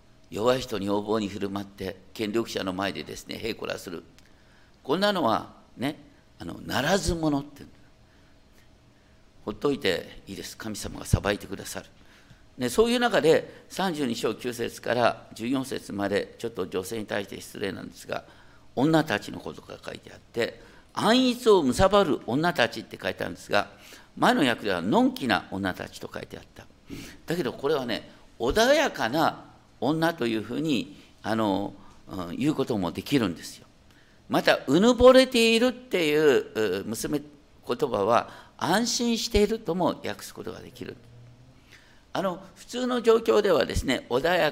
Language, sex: Japanese, male